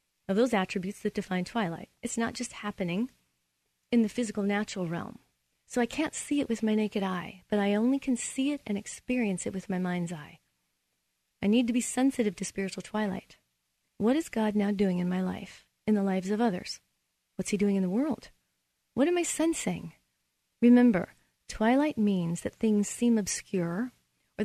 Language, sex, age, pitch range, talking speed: English, female, 30-49, 180-230 Hz, 185 wpm